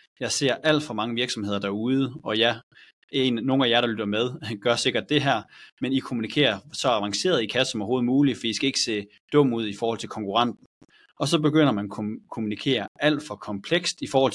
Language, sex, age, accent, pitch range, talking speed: Danish, male, 30-49, native, 105-135 Hz, 220 wpm